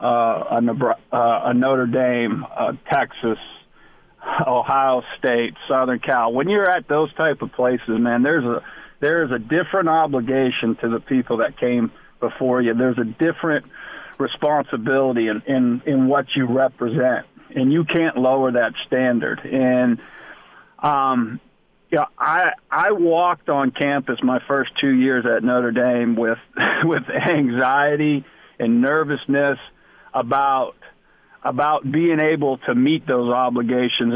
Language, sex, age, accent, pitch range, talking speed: English, male, 50-69, American, 125-145 Hz, 140 wpm